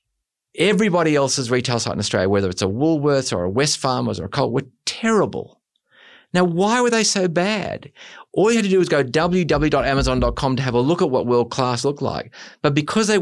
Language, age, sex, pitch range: English, 30-49, male, 110-160 Hz